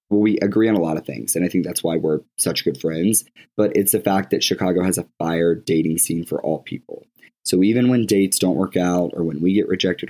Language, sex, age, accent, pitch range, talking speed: English, male, 20-39, American, 85-100 Hz, 255 wpm